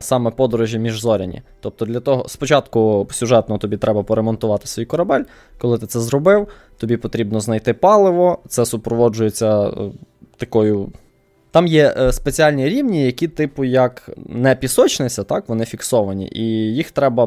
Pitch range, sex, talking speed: 110-135 Hz, male, 140 wpm